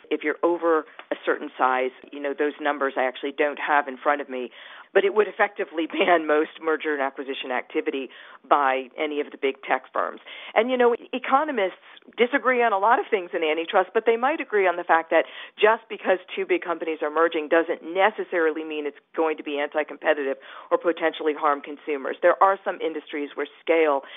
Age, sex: 50-69, female